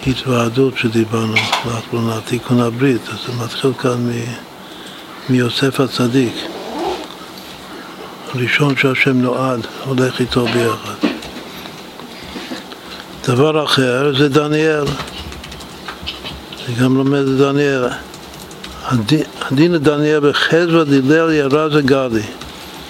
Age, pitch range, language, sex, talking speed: 60-79, 120-140 Hz, Hebrew, male, 85 wpm